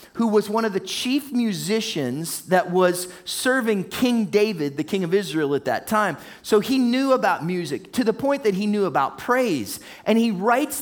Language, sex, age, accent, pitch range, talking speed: English, male, 30-49, American, 180-240 Hz, 195 wpm